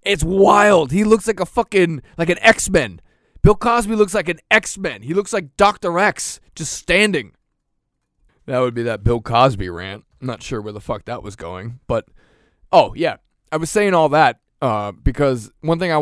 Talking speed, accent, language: 195 wpm, American, English